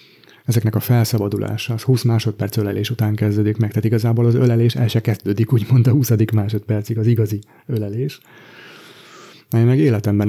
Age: 30-49